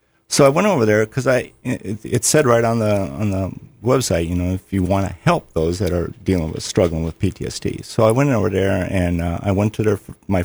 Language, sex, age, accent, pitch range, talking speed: English, male, 50-69, American, 85-105 Hz, 235 wpm